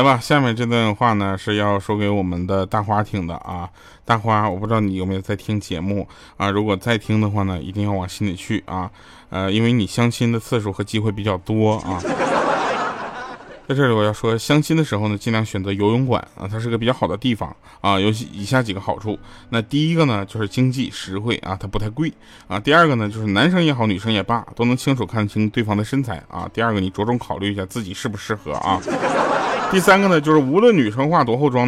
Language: Chinese